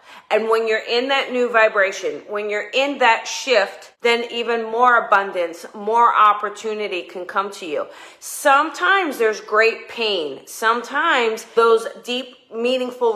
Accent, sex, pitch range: American, female, 195-260 Hz